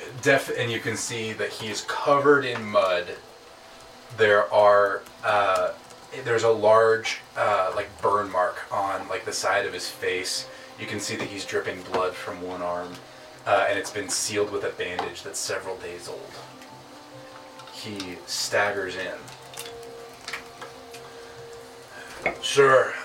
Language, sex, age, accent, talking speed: English, male, 20-39, American, 140 wpm